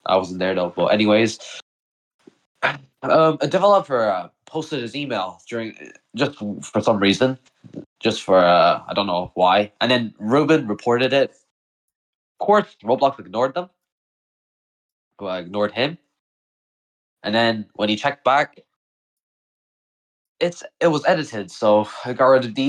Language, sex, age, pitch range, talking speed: English, male, 20-39, 100-130 Hz, 140 wpm